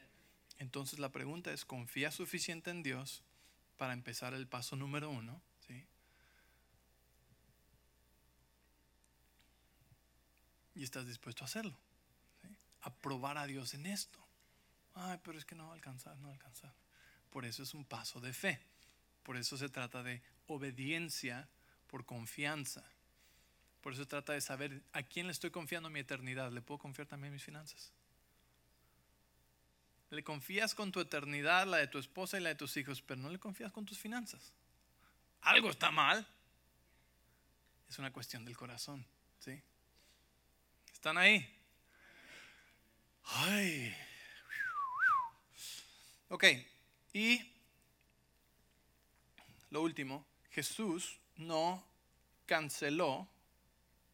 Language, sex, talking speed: English, male, 120 wpm